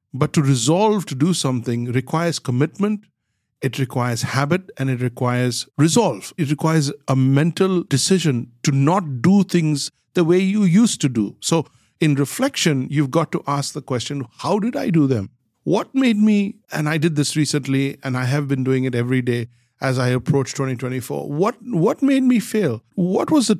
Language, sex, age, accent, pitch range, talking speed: English, male, 60-79, Indian, 130-170 Hz, 185 wpm